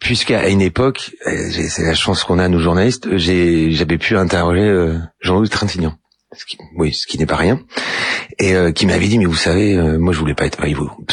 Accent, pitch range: French, 85-105 Hz